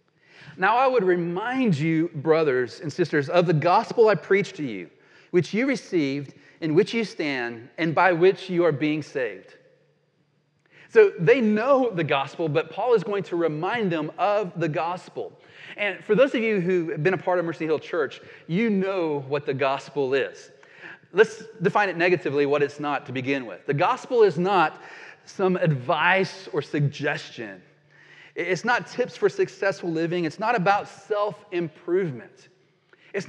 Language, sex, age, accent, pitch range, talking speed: English, male, 30-49, American, 160-215 Hz, 170 wpm